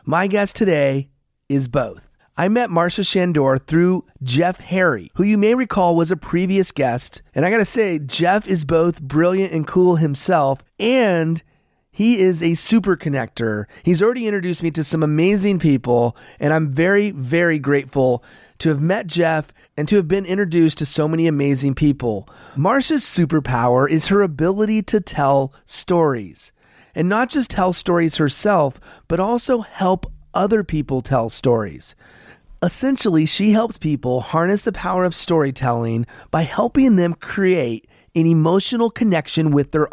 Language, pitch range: English, 140-195 Hz